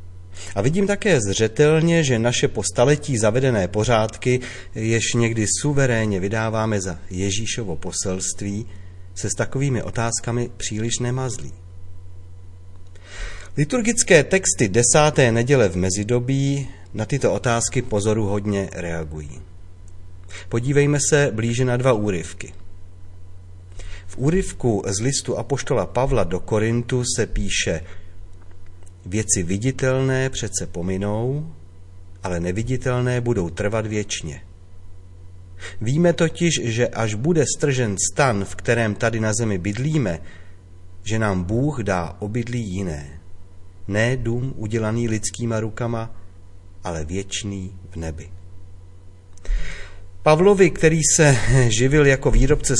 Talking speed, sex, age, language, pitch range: 105 wpm, male, 30-49, Czech, 90-125 Hz